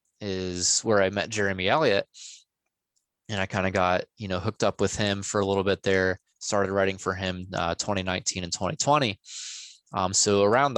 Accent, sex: American, male